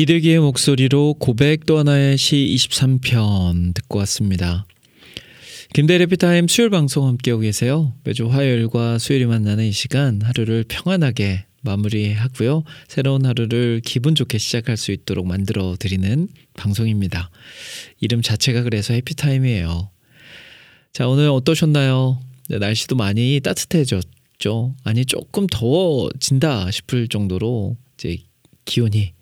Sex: male